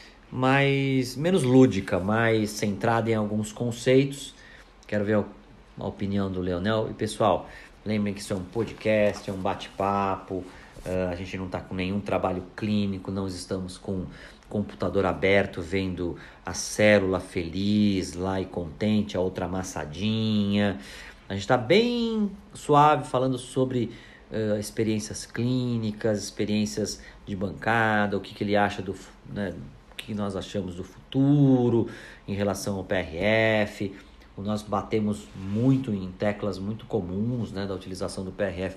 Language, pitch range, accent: Portuguese, 95-115 Hz, Brazilian